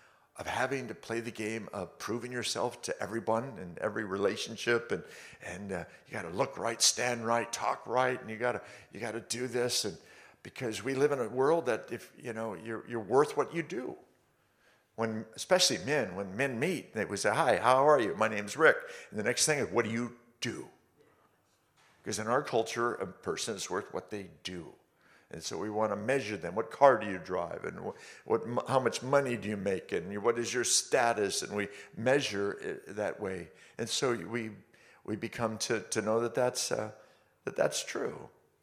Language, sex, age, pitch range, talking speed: Danish, male, 50-69, 110-130 Hz, 205 wpm